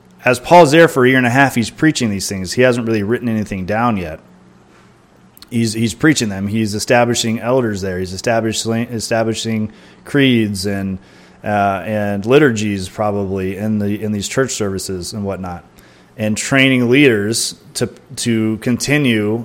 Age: 30-49